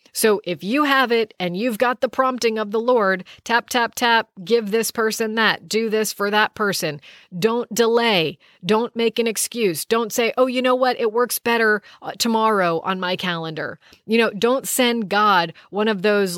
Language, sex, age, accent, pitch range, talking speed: English, female, 40-59, American, 190-235 Hz, 190 wpm